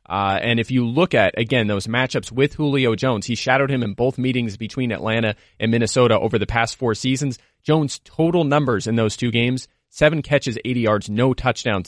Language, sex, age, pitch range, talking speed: English, male, 30-49, 110-135 Hz, 200 wpm